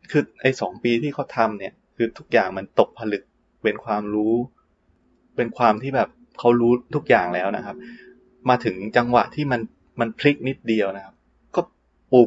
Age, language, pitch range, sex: 20-39, Thai, 100-125 Hz, male